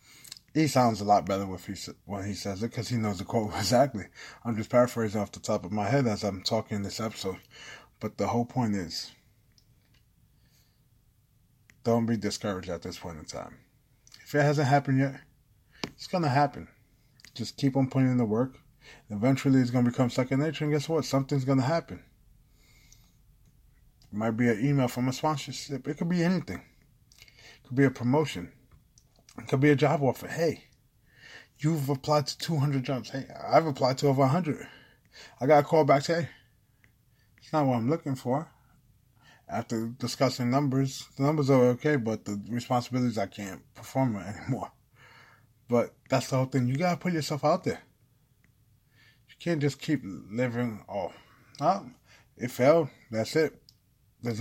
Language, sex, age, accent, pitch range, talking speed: English, male, 20-39, American, 115-140 Hz, 170 wpm